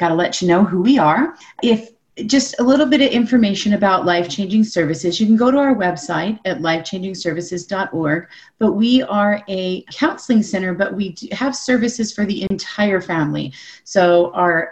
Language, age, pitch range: English, 30-49, 175-230 Hz